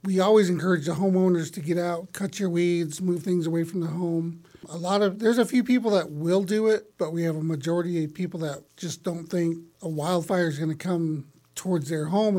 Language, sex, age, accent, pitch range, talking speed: English, male, 50-69, American, 160-185 Hz, 230 wpm